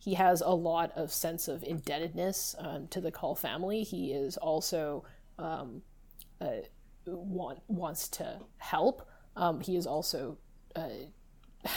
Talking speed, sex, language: 135 wpm, female, English